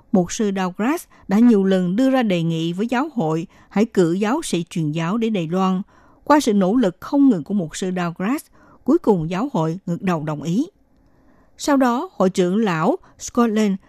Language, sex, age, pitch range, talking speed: Vietnamese, female, 60-79, 175-240 Hz, 200 wpm